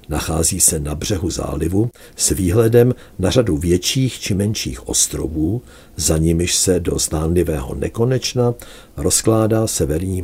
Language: Czech